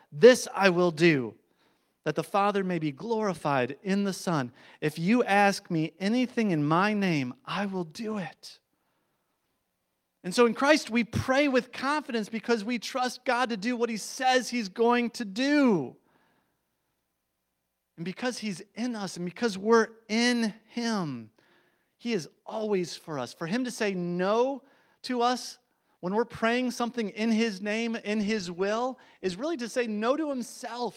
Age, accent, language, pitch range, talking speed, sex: 40-59, American, English, 180-240 Hz, 165 wpm, male